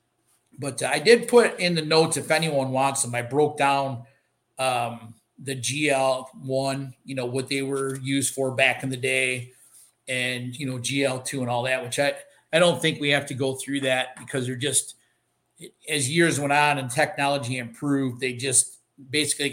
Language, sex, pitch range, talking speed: English, male, 125-150 Hz, 180 wpm